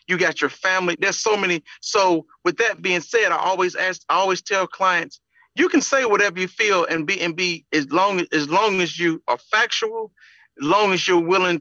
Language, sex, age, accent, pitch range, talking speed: English, male, 40-59, American, 160-205 Hz, 215 wpm